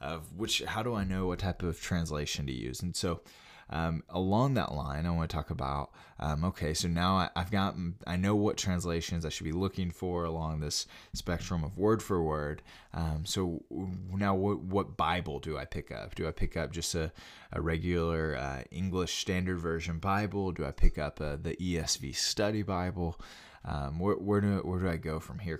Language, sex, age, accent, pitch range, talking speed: English, male, 20-39, American, 80-95 Hz, 200 wpm